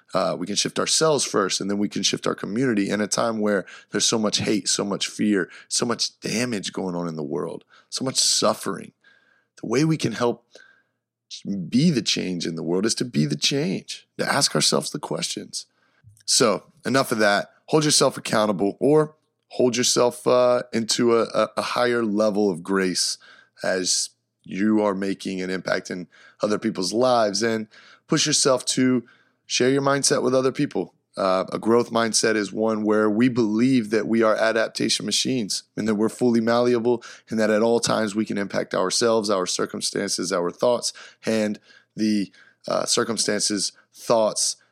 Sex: male